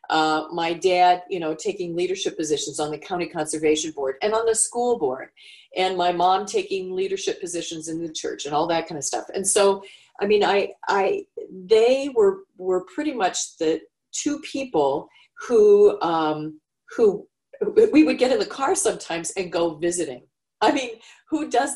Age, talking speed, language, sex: 40-59, 175 wpm, English, female